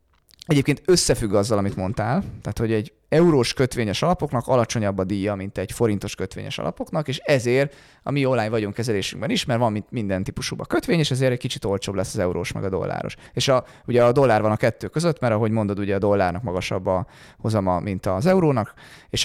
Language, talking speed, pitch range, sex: Hungarian, 205 wpm, 105-140 Hz, male